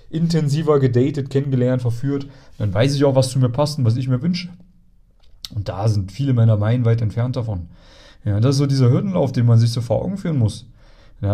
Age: 30-49